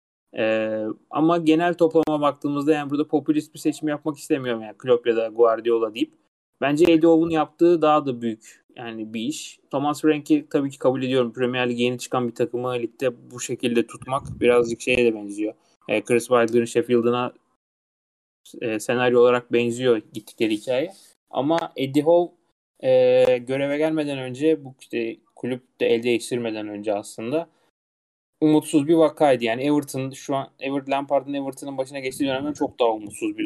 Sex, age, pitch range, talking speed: male, 30-49, 120-150 Hz, 160 wpm